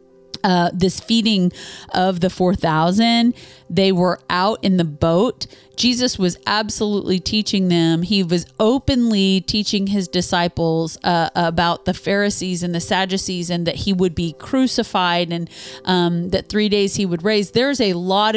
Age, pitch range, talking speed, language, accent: 40-59, 170-205 Hz, 155 wpm, English, American